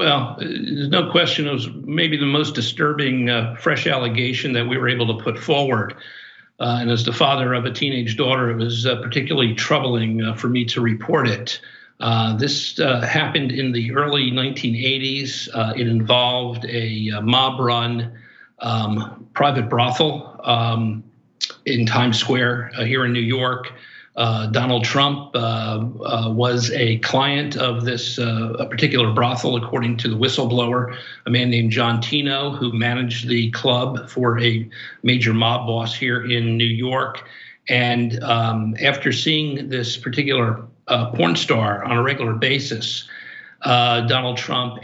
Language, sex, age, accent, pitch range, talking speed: English, male, 50-69, American, 115-130 Hz, 160 wpm